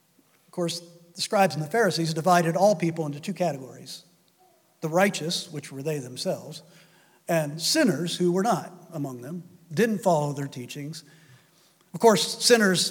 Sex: male